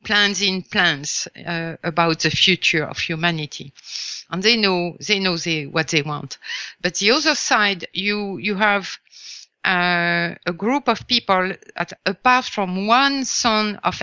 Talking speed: 155 wpm